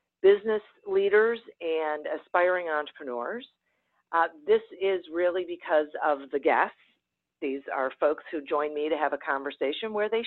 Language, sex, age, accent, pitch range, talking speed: English, female, 50-69, American, 150-225 Hz, 145 wpm